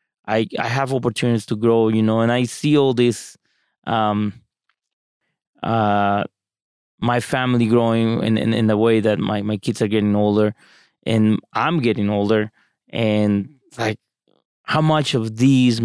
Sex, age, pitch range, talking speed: male, 20-39, 110-135 Hz, 150 wpm